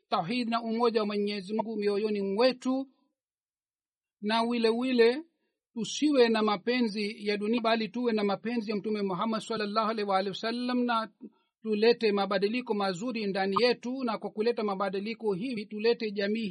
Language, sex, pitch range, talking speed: Swahili, male, 210-245 Hz, 145 wpm